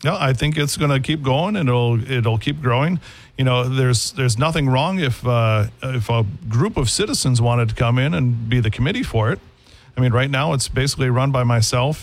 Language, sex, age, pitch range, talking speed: English, male, 40-59, 115-135 Hz, 225 wpm